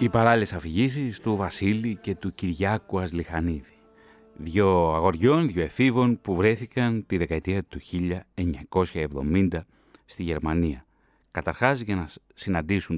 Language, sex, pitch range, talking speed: Greek, male, 90-120 Hz, 115 wpm